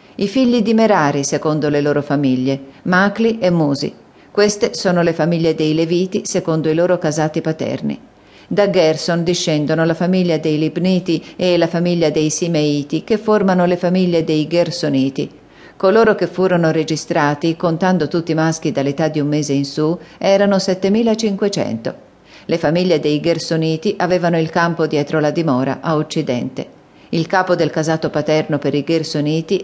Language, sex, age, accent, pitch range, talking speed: Italian, female, 40-59, native, 150-180 Hz, 155 wpm